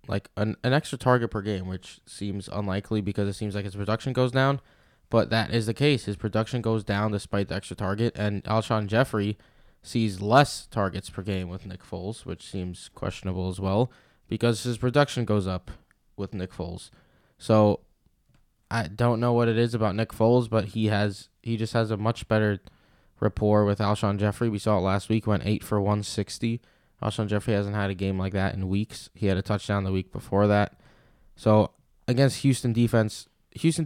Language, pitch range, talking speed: English, 100-115 Hz, 195 wpm